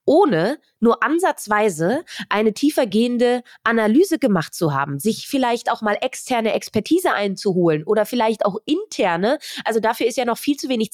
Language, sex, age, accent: German, female, 20-39, German